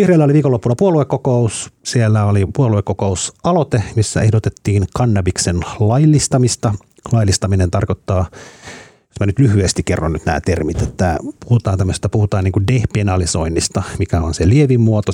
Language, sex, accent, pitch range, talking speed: Finnish, male, native, 90-110 Hz, 125 wpm